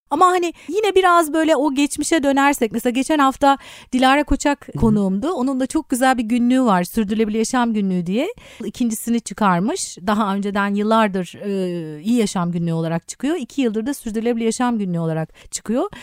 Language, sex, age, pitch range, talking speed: Turkish, female, 30-49, 225-305 Hz, 165 wpm